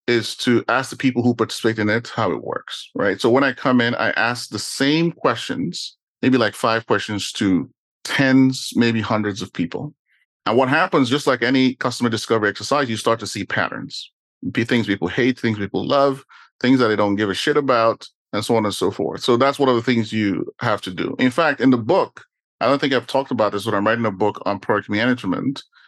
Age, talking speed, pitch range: 30-49, 225 wpm, 110-130 Hz